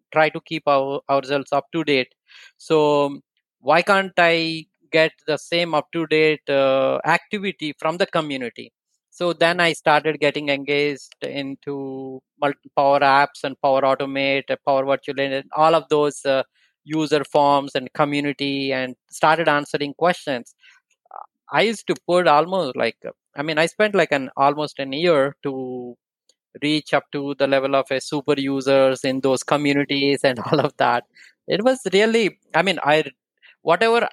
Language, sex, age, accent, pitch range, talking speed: English, male, 20-39, Indian, 140-165 Hz, 155 wpm